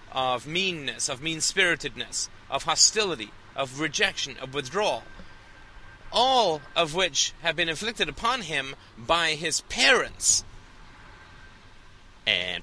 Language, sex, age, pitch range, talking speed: English, male, 30-49, 105-155 Hz, 105 wpm